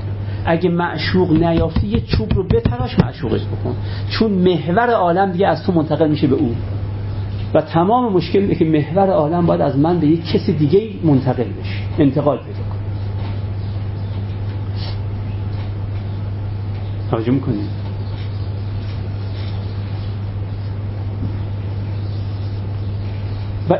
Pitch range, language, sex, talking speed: 100-150 Hz, Persian, male, 100 wpm